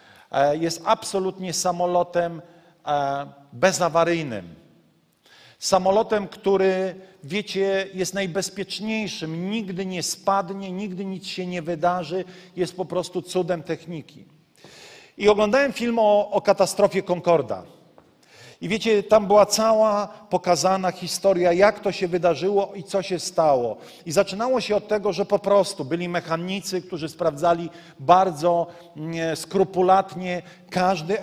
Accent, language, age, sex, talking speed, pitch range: native, Polish, 40-59, male, 115 wpm, 170-195 Hz